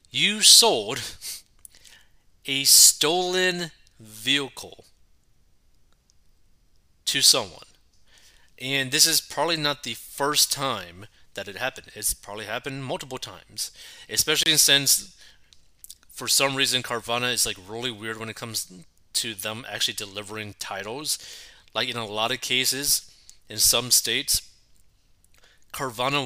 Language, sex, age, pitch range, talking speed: English, male, 30-49, 115-140 Hz, 115 wpm